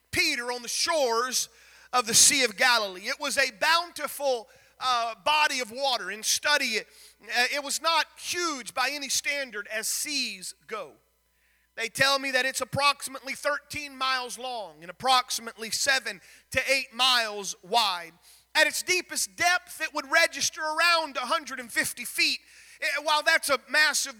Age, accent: 40-59, American